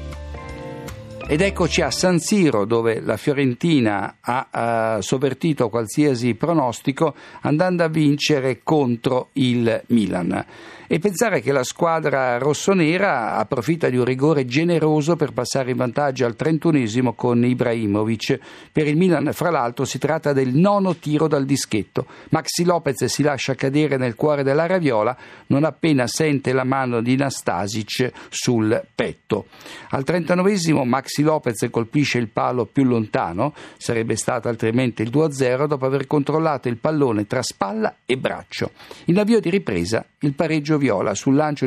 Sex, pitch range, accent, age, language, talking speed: male, 120-155 Hz, native, 50-69, Italian, 145 wpm